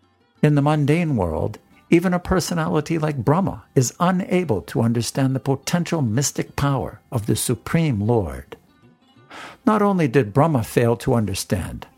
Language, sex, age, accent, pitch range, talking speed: English, male, 60-79, American, 115-145 Hz, 140 wpm